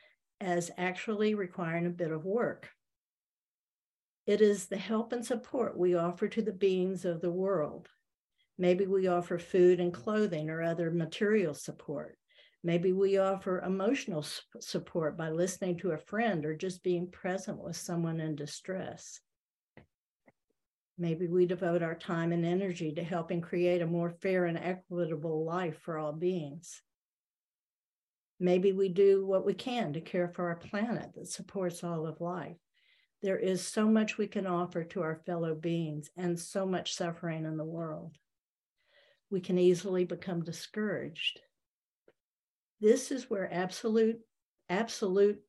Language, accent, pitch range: English, American, 170-195 Hz